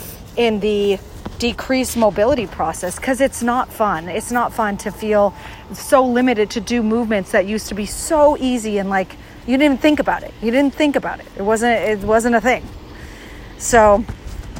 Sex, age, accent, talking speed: female, 40-59, American, 180 wpm